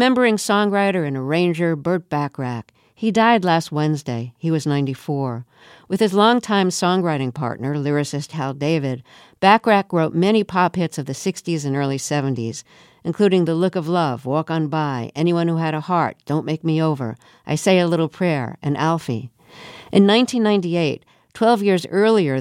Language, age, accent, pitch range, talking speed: English, 50-69, American, 140-190 Hz, 165 wpm